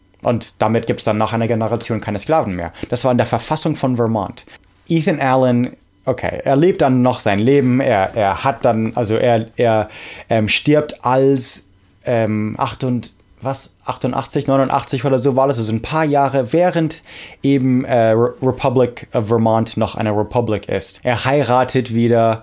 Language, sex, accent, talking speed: English, male, German, 170 wpm